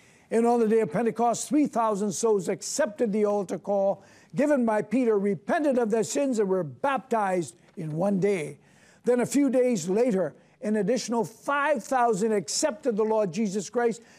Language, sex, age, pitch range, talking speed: English, male, 60-79, 200-250 Hz, 160 wpm